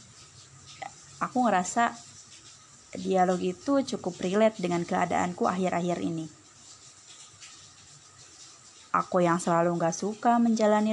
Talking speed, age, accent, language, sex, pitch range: 90 wpm, 20-39, native, Indonesian, female, 155-220 Hz